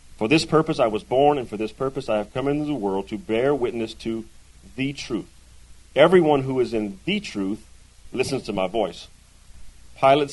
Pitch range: 100-135 Hz